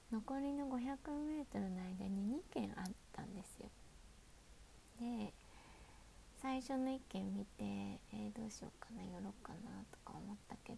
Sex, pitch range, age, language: female, 210-265 Hz, 20-39, Japanese